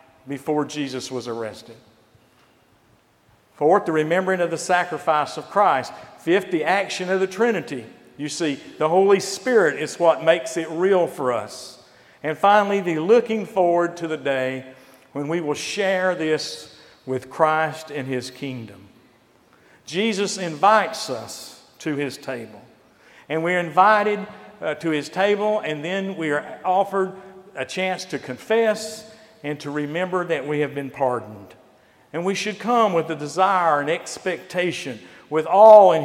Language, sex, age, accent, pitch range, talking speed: English, male, 50-69, American, 140-185 Hz, 150 wpm